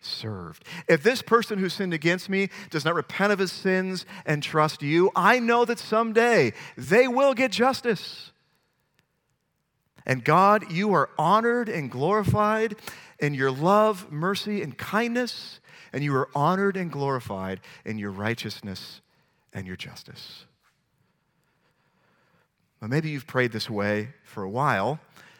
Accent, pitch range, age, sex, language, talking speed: American, 120-185 Hz, 40-59, male, English, 140 wpm